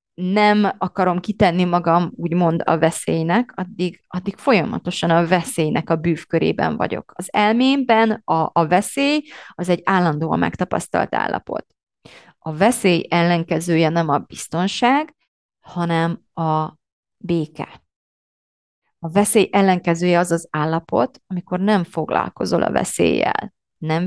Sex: female